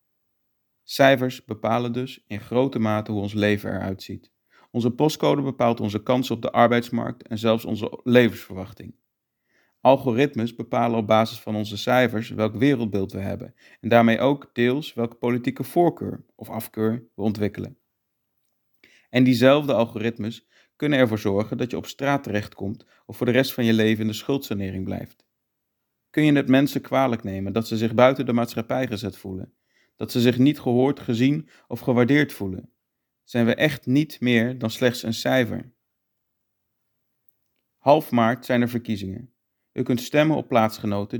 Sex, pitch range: male, 110-125 Hz